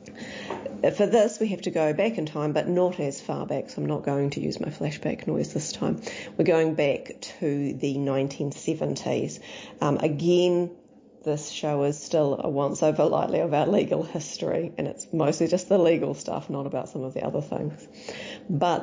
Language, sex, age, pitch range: English, female, 40-59, 145-175 Hz